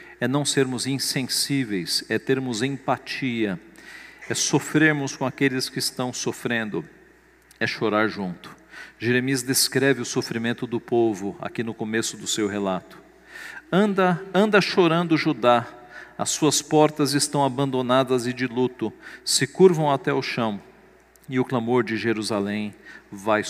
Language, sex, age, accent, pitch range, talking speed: Portuguese, male, 50-69, Brazilian, 115-150 Hz, 135 wpm